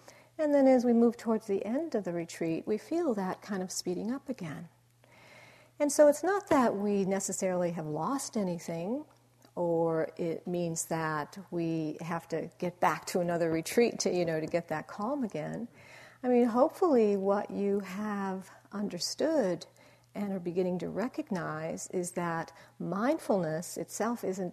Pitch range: 170-235 Hz